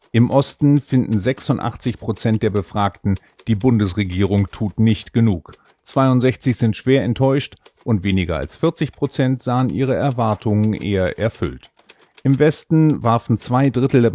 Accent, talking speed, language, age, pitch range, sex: German, 125 wpm, German, 50-69, 95-130 Hz, male